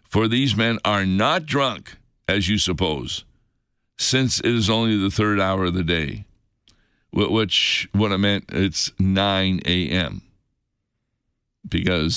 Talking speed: 135 wpm